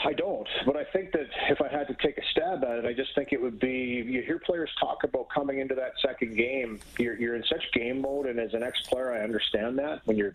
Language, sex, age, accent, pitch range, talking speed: English, male, 40-59, American, 115-135 Hz, 265 wpm